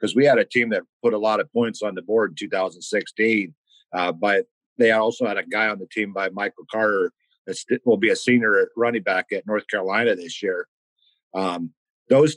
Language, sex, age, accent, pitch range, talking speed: English, male, 50-69, American, 105-130 Hz, 210 wpm